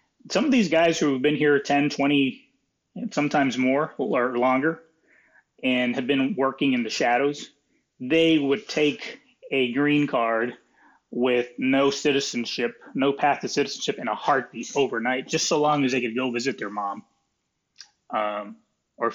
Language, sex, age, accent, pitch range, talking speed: English, male, 30-49, American, 115-145 Hz, 155 wpm